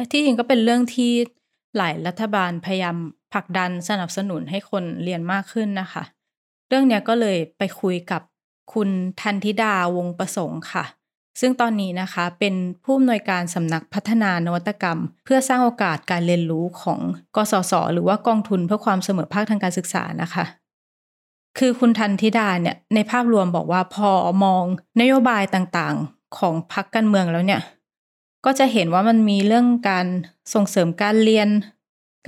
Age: 20-39